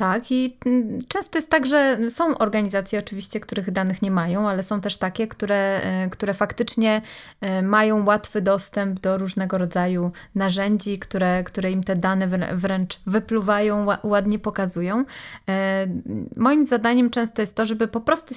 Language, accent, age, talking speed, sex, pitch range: Polish, native, 20-39, 145 wpm, female, 190-225 Hz